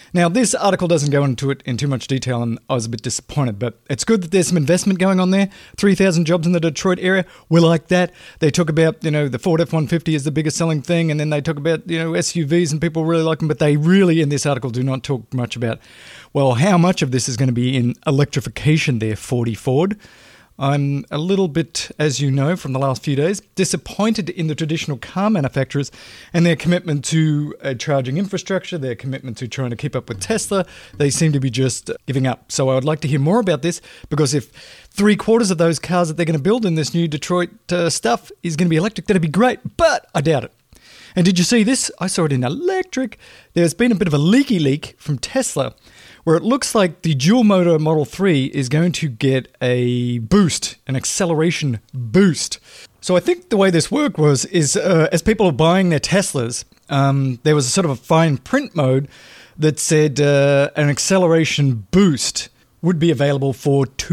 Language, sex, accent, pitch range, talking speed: English, male, Australian, 135-175 Hz, 225 wpm